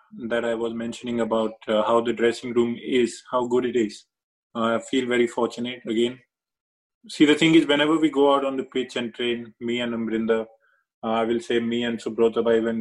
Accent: Indian